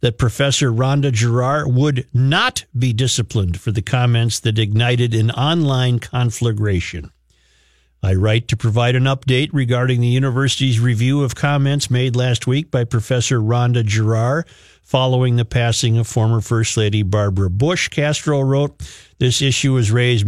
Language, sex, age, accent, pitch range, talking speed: English, male, 50-69, American, 115-150 Hz, 150 wpm